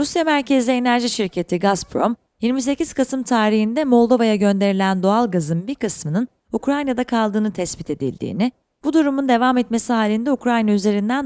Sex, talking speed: female, 135 wpm